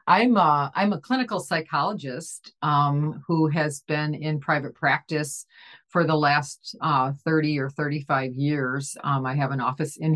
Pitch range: 150-190 Hz